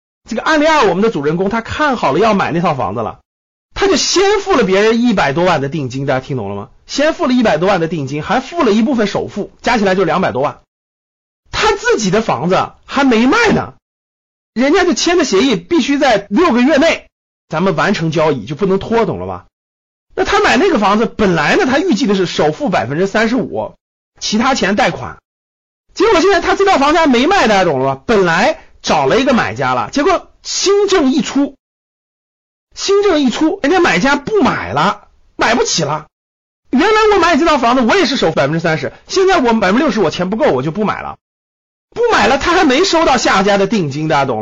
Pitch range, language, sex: 190-305 Hz, Chinese, male